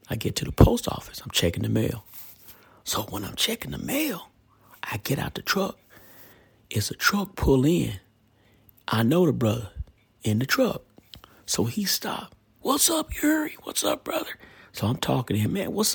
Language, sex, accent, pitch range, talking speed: English, male, American, 100-125 Hz, 185 wpm